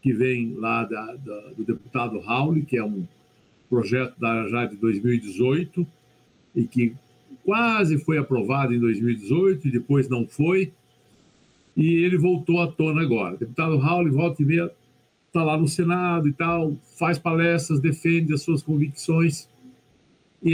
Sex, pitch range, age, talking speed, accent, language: male, 120-160 Hz, 60-79, 150 wpm, Brazilian, Portuguese